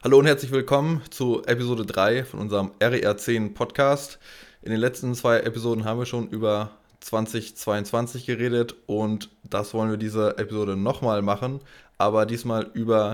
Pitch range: 100-115 Hz